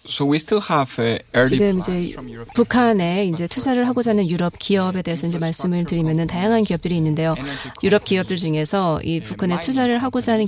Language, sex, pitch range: Korean, female, 160-210 Hz